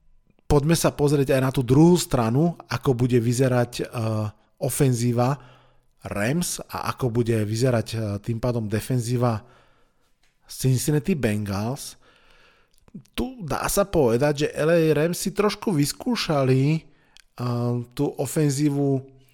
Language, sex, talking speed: Slovak, male, 105 wpm